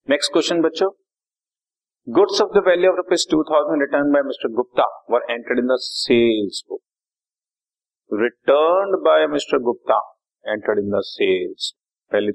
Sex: male